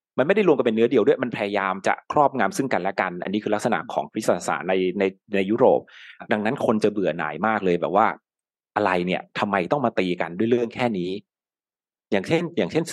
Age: 30-49